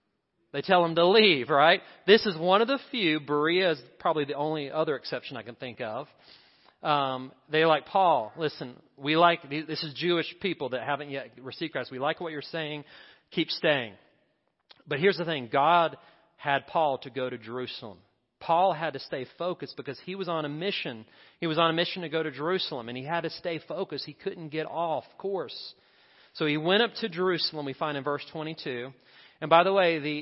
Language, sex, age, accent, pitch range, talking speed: English, male, 40-59, American, 140-170 Hz, 205 wpm